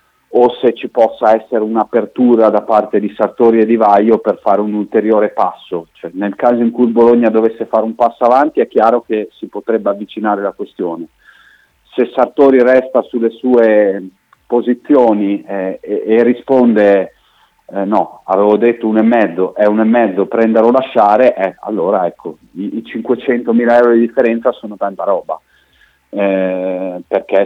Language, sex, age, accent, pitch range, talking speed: Italian, male, 40-59, native, 100-120 Hz, 165 wpm